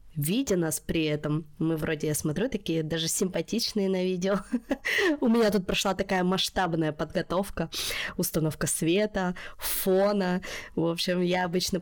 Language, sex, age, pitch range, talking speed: Russian, female, 20-39, 170-205 Hz, 135 wpm